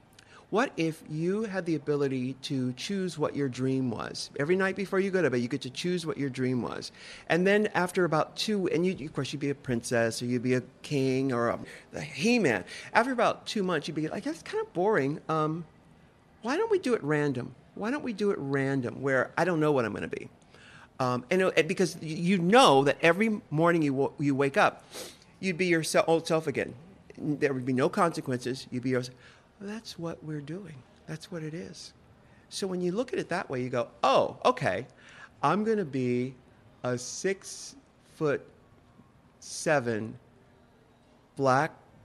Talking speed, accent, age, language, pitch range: 195 wpm, American, 50-69, English, 125-175 Hz